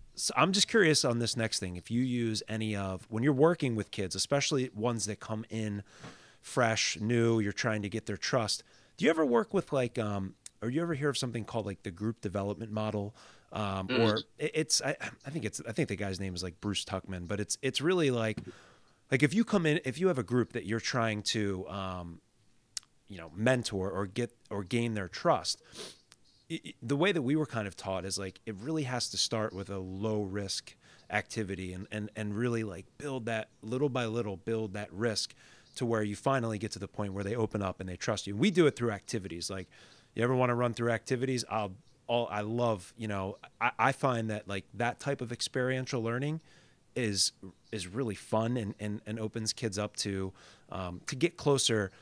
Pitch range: 100-125 Hz